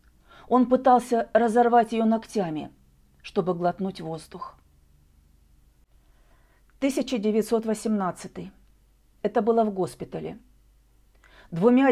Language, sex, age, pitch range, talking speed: Russian, female, 40-59, 180-245 Hz, 70 wpm